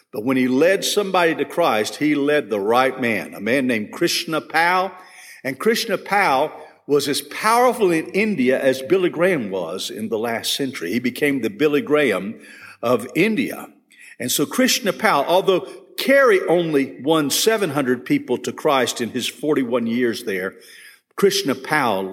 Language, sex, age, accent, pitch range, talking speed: English, male, 50-69, American, 150-225 Hz, 160 wpm